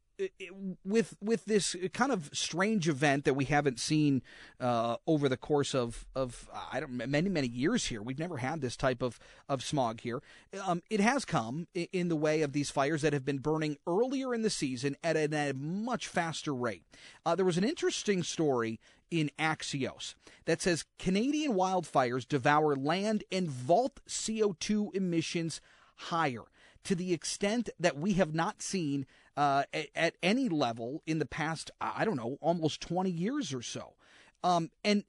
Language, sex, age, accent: English, male, 40-59, American